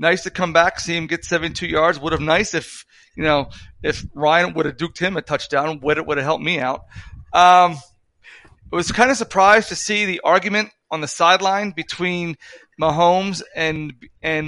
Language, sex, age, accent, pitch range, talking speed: English, male, 30-49, American, 155-185 Hz, 185 wpm